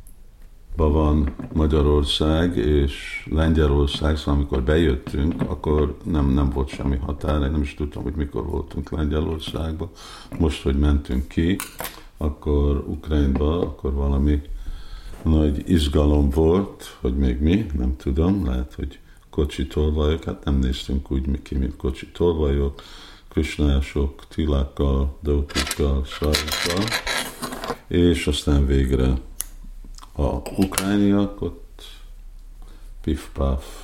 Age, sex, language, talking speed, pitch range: 50-69, male, Hungarian, 100 wpm, 70-80 Hz